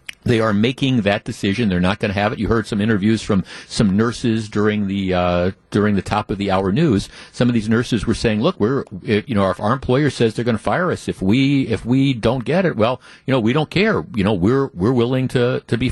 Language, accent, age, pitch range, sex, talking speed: English, American, 50-69, 100-125 Hz, male, 255 wpm